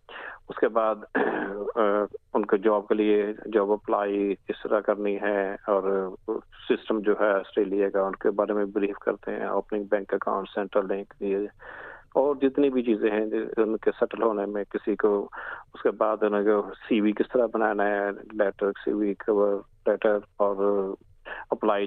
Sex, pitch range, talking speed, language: male, 100-105 Hz, 105 wpm, Urdu